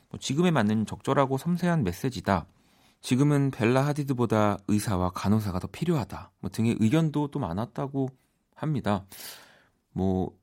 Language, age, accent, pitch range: Korean, 40-59, native, 95-135 Hz